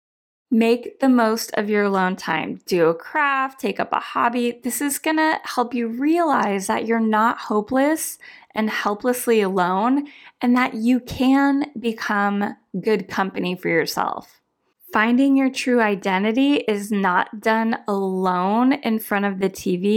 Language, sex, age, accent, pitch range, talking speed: English, female, 20-39, American, 210-270 Hz, 145 wpm